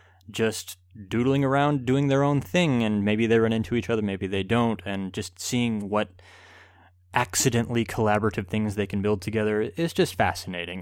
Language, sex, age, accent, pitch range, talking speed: English, male, 20-39, American, 95-120 Hz, 170 wpm